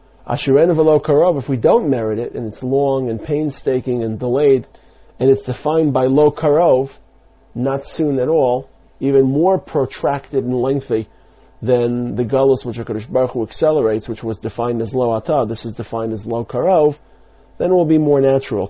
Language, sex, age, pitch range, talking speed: English, male, 40-59, 115-145 Hz, 185 wpm